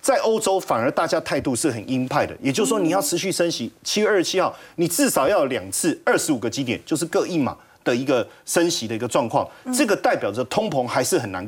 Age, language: 30-49, Chinese